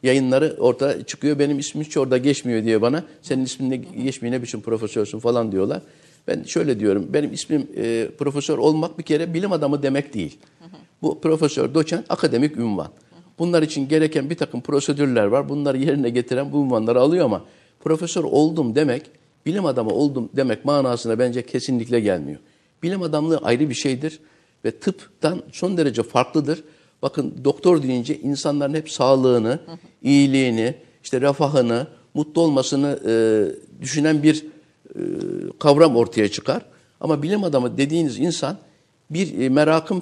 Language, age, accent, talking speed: Turkish, 50-69, native, 145 wpm